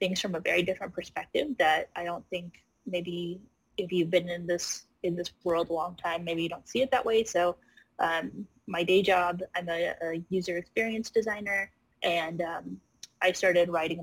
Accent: American